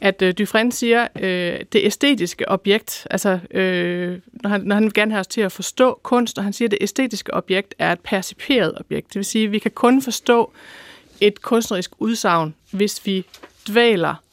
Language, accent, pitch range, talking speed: Danish, native, 190-225 Hz, 200 wpm